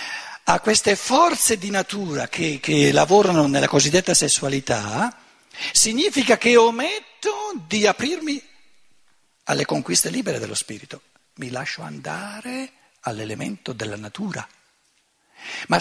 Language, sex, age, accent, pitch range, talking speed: Italian, male, 60-79, native, 155-250 Hz, 105 wpm